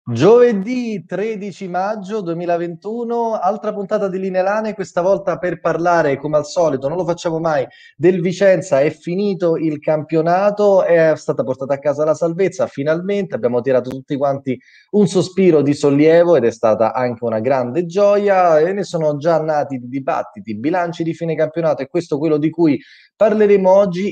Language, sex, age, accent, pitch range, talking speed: Italian, male, 20-39, native, 135-175 Hz, 165 wpm